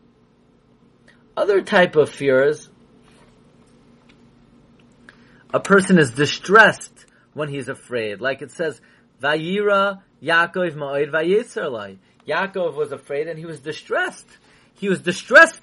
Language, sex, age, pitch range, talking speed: English, male, 30-49, 165-230 Hz, 105 wpm